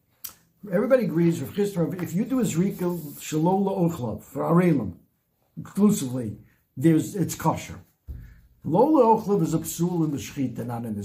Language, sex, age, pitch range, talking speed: English, male, 60-79, 155-210 Hz, 145 wpm